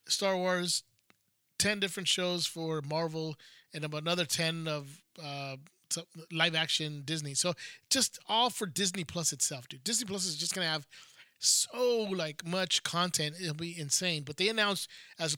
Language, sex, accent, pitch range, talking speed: English, male, American, 155-190 Hz, 160 wpm